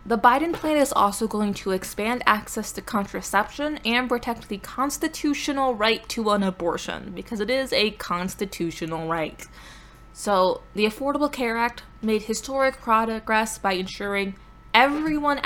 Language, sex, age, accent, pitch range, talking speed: English, female, 20-39, American, 190-235 Hz, 140 wpm